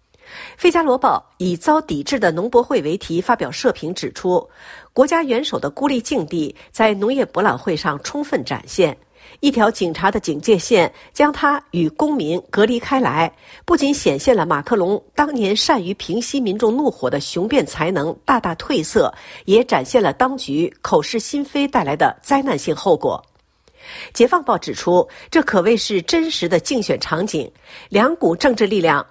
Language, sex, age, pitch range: Chinese, female, 50-69, 205-295 Hz